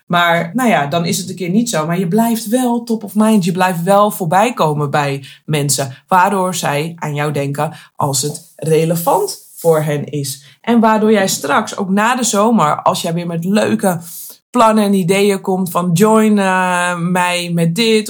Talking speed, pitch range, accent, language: 190 wpm, 160-220 Hz, Dutch, Dutch